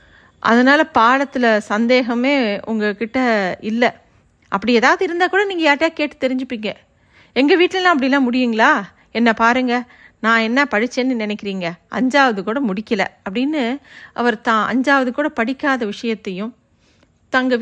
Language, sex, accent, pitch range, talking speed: Tamil, female, native, 215-265 Hz, 110 wpm